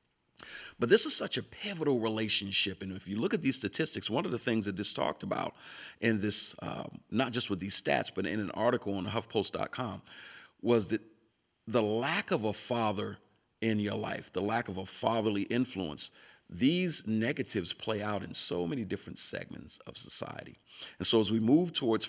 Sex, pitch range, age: male, 100-120 Hz, 40-59